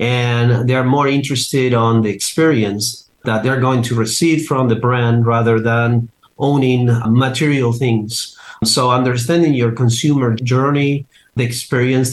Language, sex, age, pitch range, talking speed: English, male, 40-59, 115-135 Hz, 135 wpm